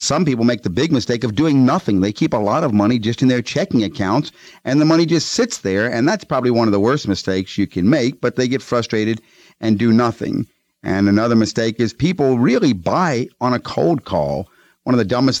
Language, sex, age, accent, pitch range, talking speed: English, male, 50-69, American, 110-130 Hz, 230 wpm